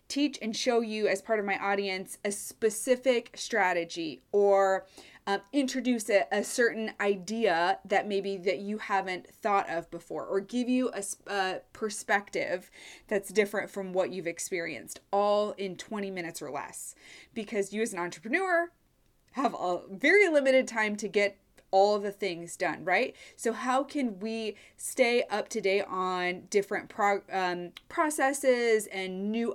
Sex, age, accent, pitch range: female, 20-39, American, 190-225 Hz